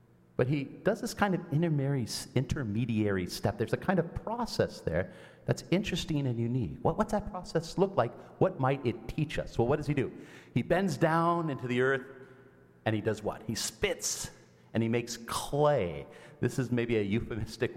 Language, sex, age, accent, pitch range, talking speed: English, male, 40-59, American, 110-155 Hz, 180 wpm